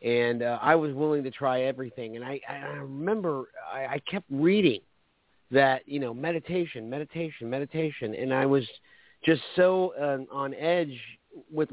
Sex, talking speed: male, 160 wpm